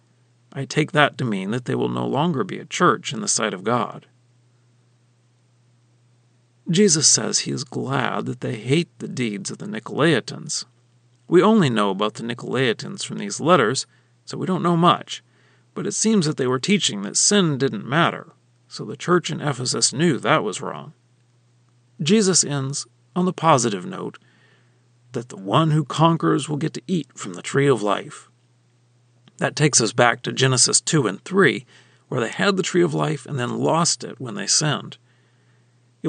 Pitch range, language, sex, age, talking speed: 120-160 Hz, English, male, 40-59, 180 wpm